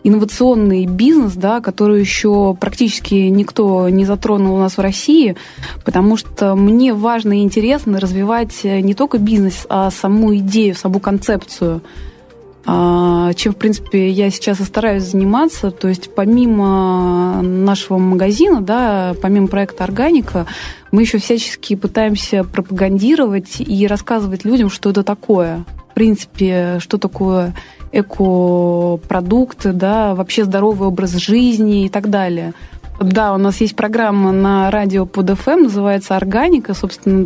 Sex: female